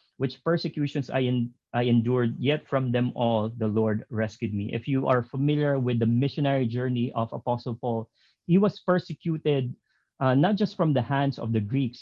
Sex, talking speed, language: male, 185 wpm, English